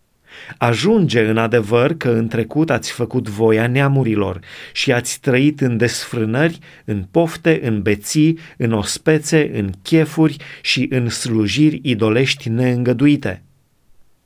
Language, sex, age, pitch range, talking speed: Romanian, male, 30-49, 115-145 Hz, 120 wpm